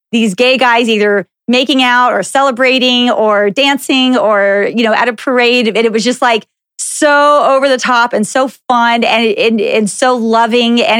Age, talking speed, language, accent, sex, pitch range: 30-49, 185 wpm, English, American, female, 215-260 Hz